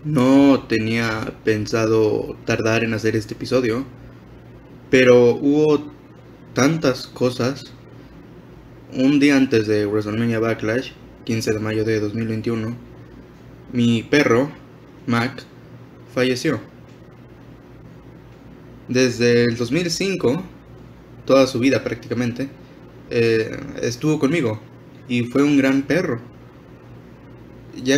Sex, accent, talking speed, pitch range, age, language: male, Mexican, 90 wpm, 110-130 Hz, 20-39, Spanish